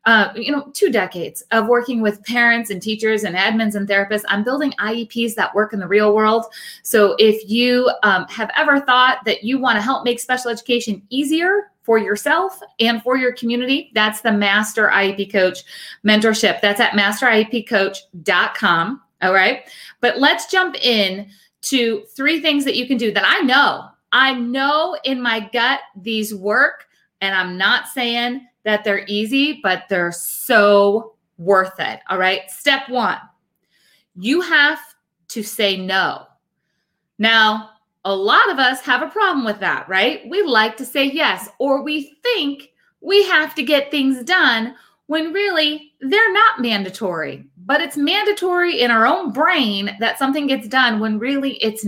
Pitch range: 210-280 Hz